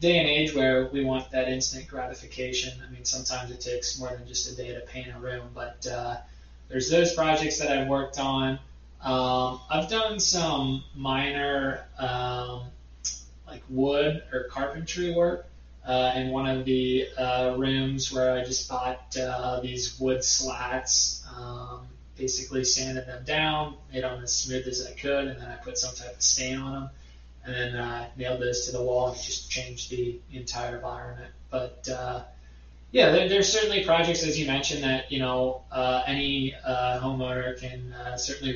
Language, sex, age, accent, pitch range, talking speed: English, male, 20-39, American, 125-135 Hz, 175 wpm